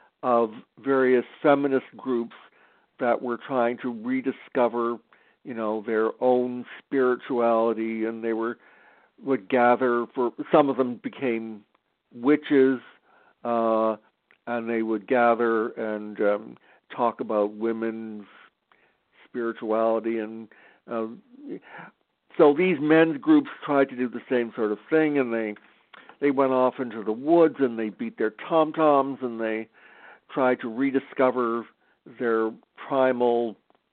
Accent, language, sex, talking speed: American, English, male, 125 wpm